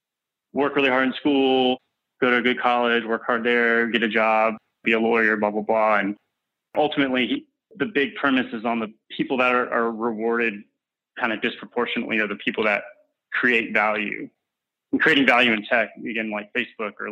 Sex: male